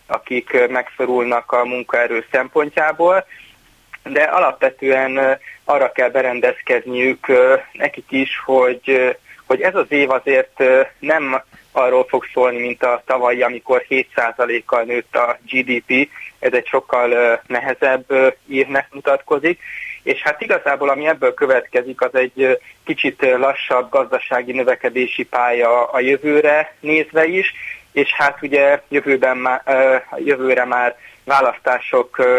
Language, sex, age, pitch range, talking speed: Hungarian, male, 20-39, 120-145 Hz, 115 wpm